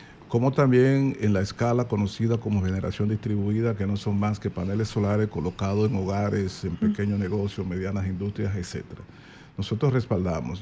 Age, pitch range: 50-69, 100-120 Hz